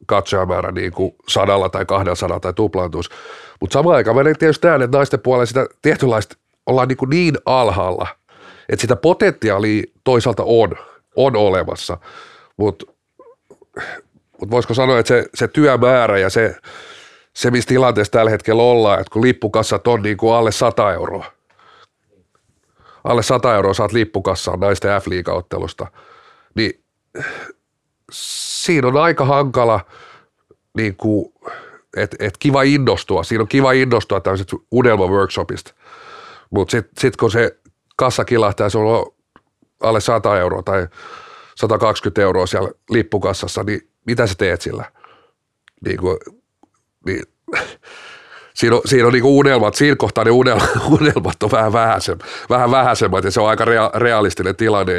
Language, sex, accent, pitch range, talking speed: Finnish, male, native, 100-140 Hz, 135 wpm